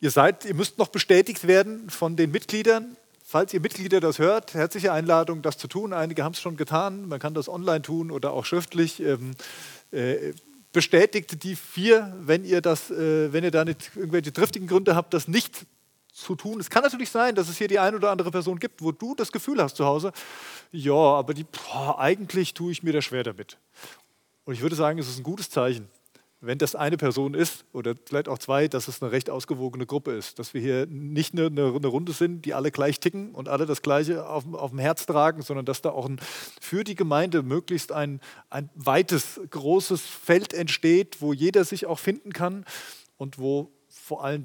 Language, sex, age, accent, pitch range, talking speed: German, male, 30-49, German, 140-185 Hz, 210 wpm